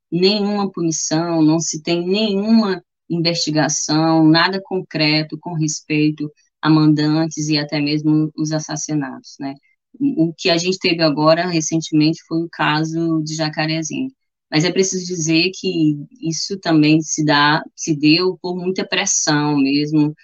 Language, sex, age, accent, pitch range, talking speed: Portuguese, female, 20-39, Brazilian, 150-170 Hz, 135 wpm